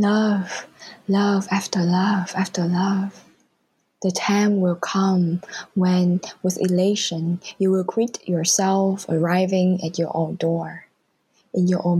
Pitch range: 170-195 Hz